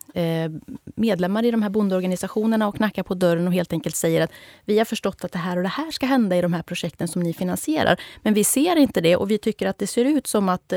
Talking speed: 255 wpm